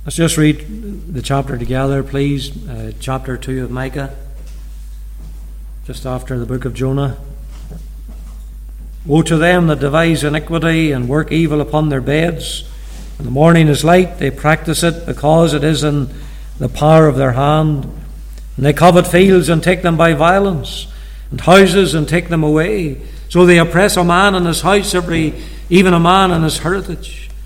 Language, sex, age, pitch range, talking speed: English, male, 60-79, 140-185 Hz, 170 wpm